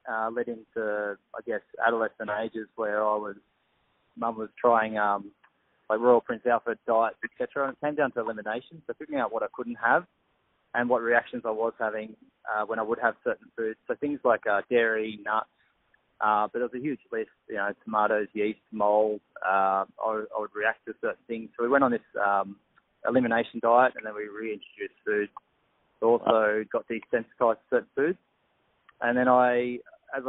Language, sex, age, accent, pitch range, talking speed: English, male, 20-39, Australian, 105-120 Hz, 190 wpm